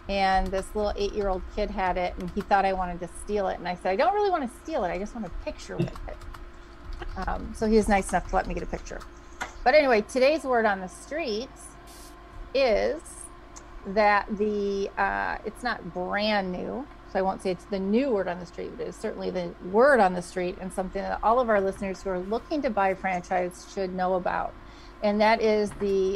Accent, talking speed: American, 225 wpm